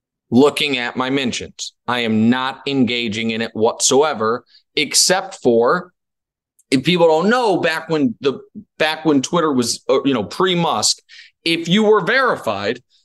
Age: 30-49